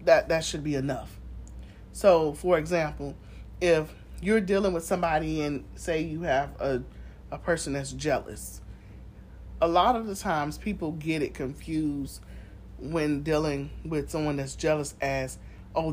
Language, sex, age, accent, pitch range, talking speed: English, male, 40-59, American, 140-175 Hz, 145 wpm